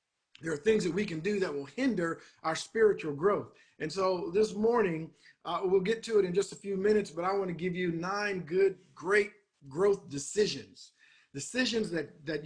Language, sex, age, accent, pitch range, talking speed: English, male, 50-69, American, 160-210 Hz, 195 wpm